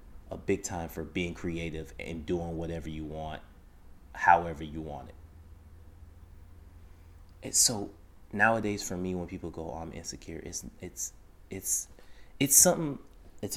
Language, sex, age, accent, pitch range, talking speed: English, male, 30-49, American, 80-95 Hz, 140 wpm